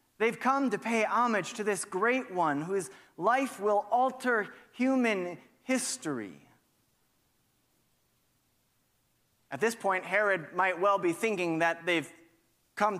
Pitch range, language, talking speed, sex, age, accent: 170-215 Hz, English, 120 wpm, male, 30-49, American